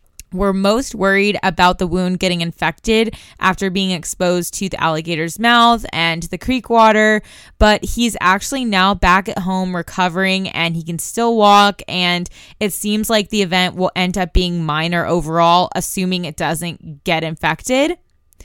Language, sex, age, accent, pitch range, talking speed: English, female, 20-39, American, 170-200 Hz, 160 wpm